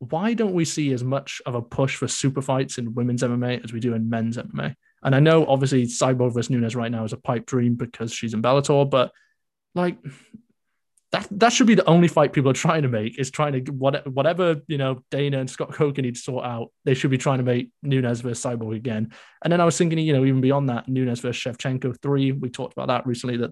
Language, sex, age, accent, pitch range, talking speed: English, male, 20-39, British, 120-145 Hz, 240 wpm